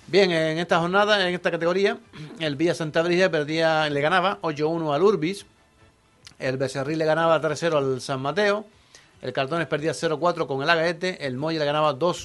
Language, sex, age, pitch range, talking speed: Spanish, male, 50-69, 140-180 Hz, 170 wpm